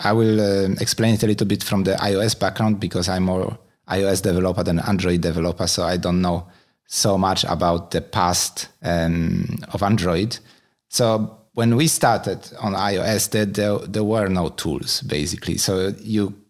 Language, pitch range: English, 90-110 Hz